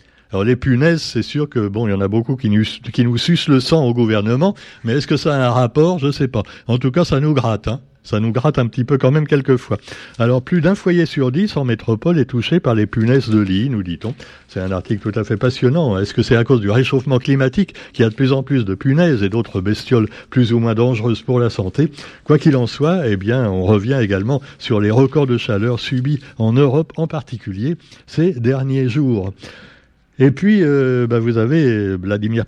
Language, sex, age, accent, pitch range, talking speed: French, male, 60-79, French, 110-140 Hz, 235 wpm